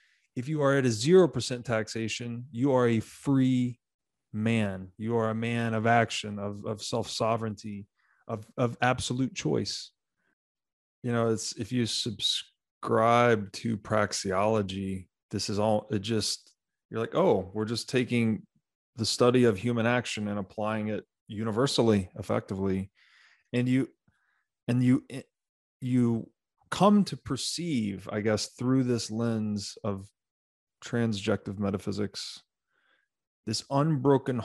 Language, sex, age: English, male, 30-49